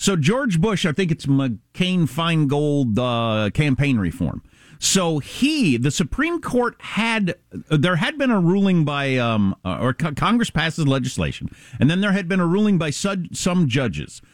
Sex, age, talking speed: male, 50-69, 165 wpm